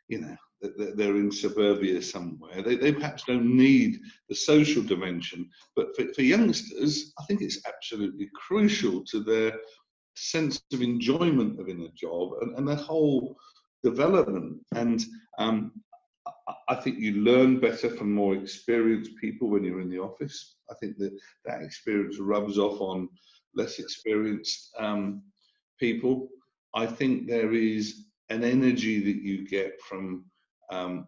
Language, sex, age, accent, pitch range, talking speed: English, male, 50-69, British, 100-130 Hz, 140 wpm